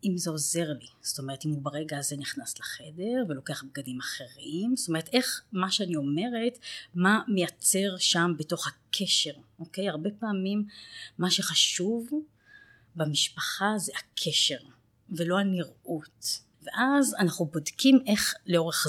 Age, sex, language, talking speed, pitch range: 30-49, female, Hebrew, 130 wpm, 150-195 Hz